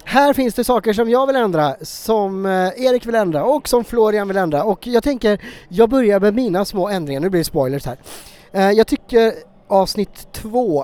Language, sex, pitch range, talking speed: English, male, 155-215 Hz, 195 wpm